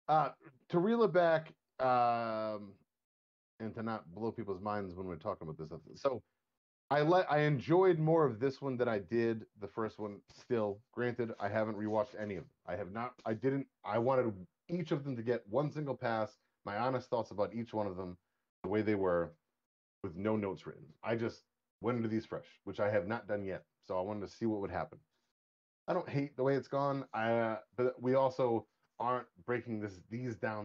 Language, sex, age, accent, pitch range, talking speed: English, male, 30-49, American, 95-125 Hz, 210 wpm